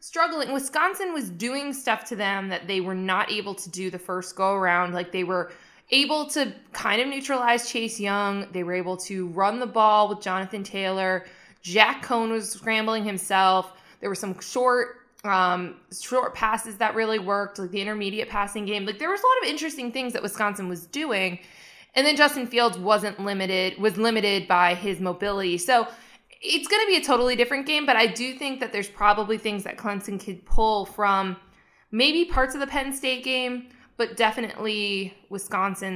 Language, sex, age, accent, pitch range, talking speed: English, female, 20-39, American, 185-240 Hz, 190 wpm